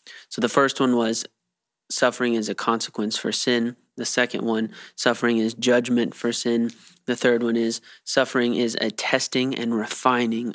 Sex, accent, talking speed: male, American, 165 wpm